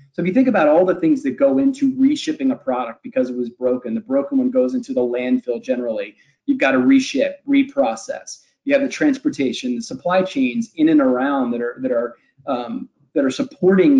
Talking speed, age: 210 wpm, 30-49